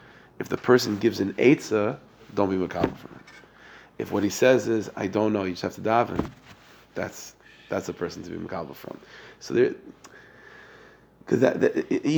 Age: 30-49